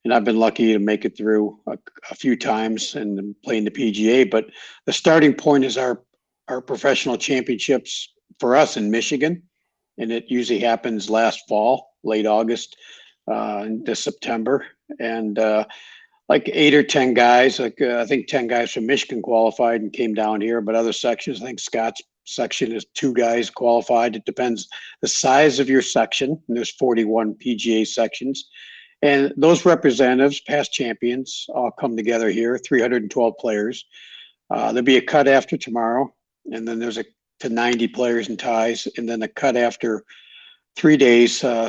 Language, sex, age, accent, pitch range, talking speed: English, male, 50-69, American, 110-130 Hz, 170 wpm